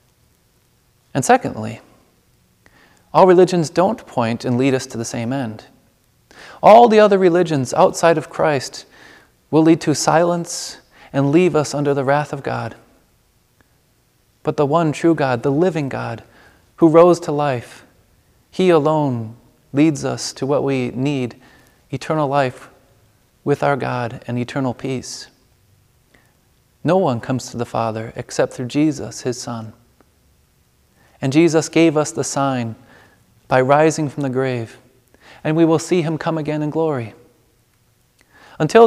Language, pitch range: English, 125-155 Hz